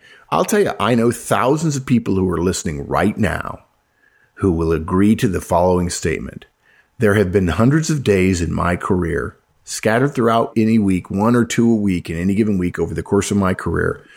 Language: English